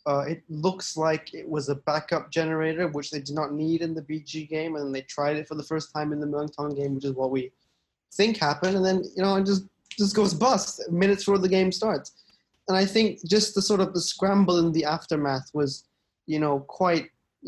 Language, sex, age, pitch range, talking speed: English, male, 20-39, 145-180 Hz, 225 wpm